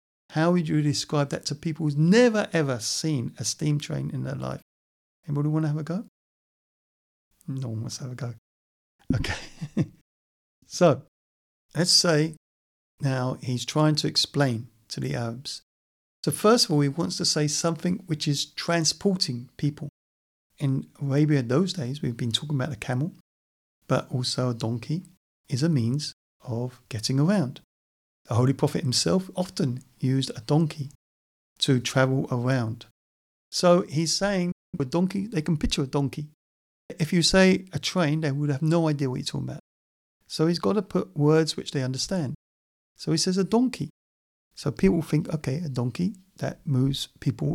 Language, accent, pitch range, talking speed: English, British, 120-165 Hz, 170 wpm